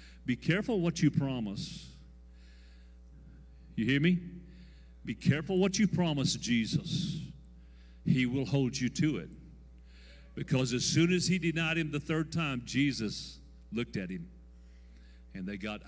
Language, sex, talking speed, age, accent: English, male, 140 wpm, 50-69, American